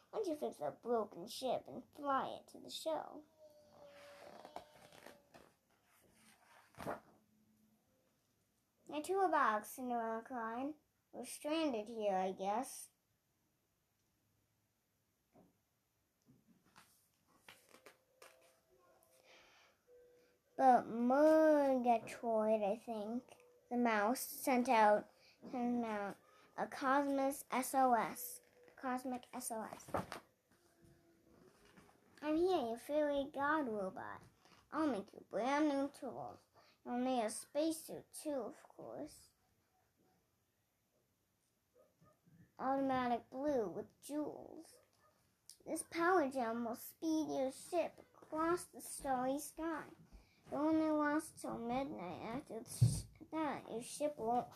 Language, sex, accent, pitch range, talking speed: English, male, American, 230-305 Hz, 90 wpm